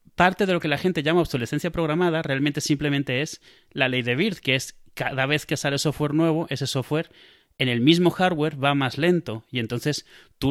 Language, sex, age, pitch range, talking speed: Spanish, male, 30-49, 125-160 Hz, 205 wpm